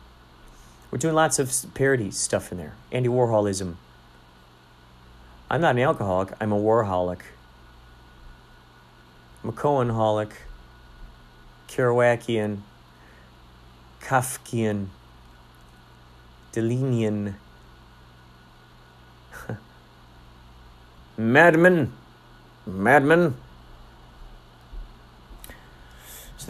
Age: 30-49